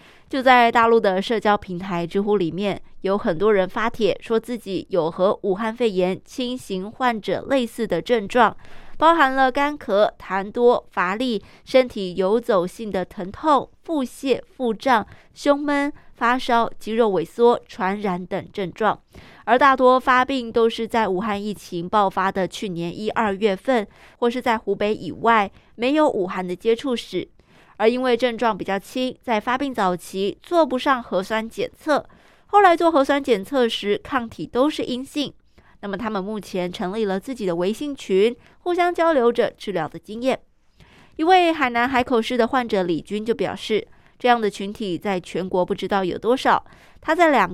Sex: female